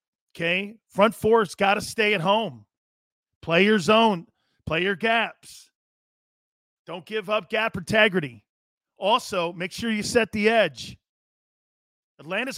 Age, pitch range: 40-59, 160-225 Hz